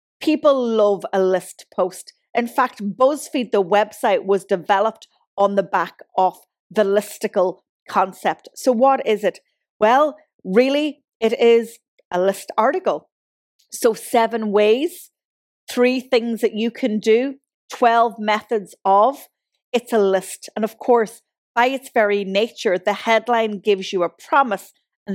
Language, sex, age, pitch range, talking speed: English, female, 30-49, 190-245 Hz, 140 wpm